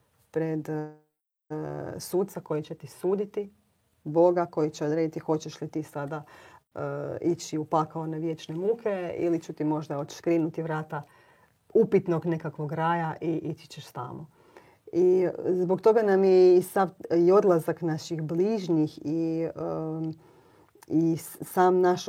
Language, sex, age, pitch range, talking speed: Croatian, female, 30-49, 155-185 Hz, 140 wpm